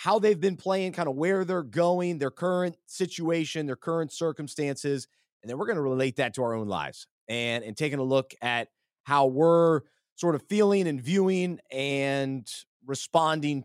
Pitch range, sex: 120-155 Hz, male